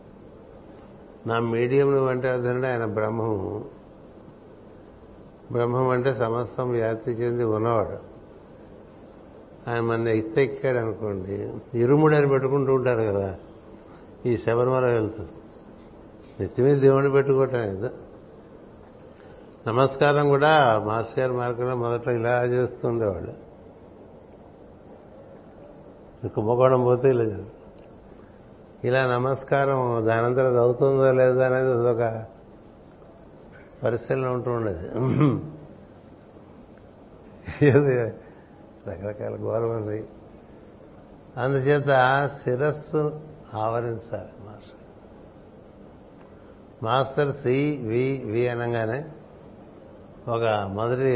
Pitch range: 110-130 Hz